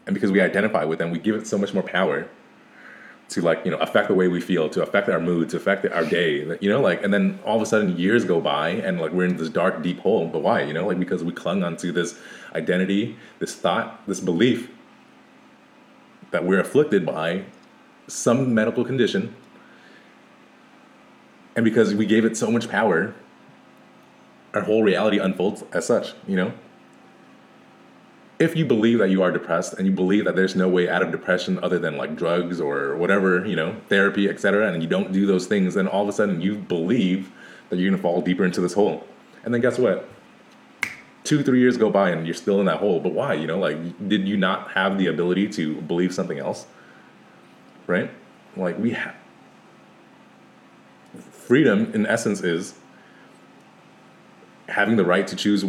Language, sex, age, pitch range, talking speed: English, male, 30-49, 90-110 Hz, 195 wpm